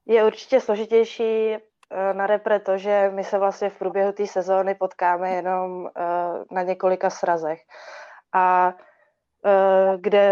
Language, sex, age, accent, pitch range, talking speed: Czech, female, 20-39, native, 185-200 Hz, 115 wpm